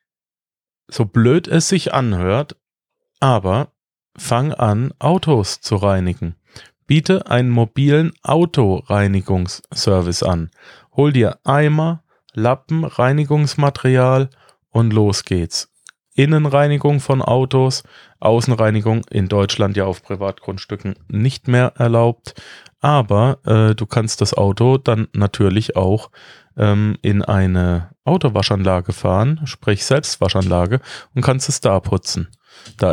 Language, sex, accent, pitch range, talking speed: German, male, German, 100-140 Hz, 105 wpm